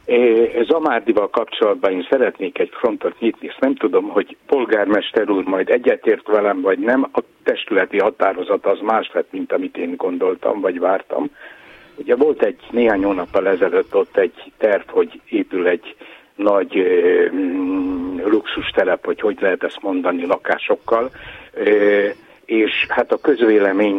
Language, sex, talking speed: Hungarian, male, 145 wpm